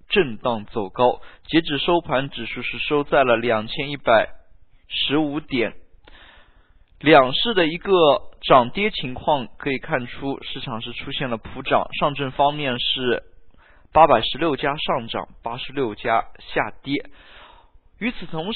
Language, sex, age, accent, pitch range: Chinese, male, 20-39, native, 115-165 Hz